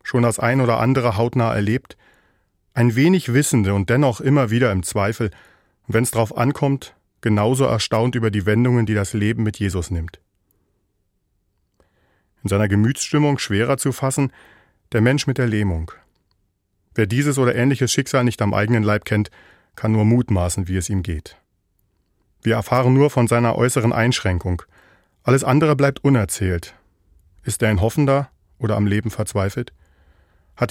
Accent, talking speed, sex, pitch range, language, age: German, 155 wpm, male, 95-125 Hz, German, 40-59